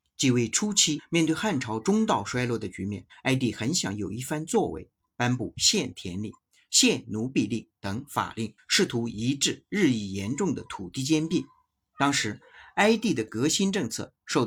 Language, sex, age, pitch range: Chinese, male, 50-69, 105-150 Hz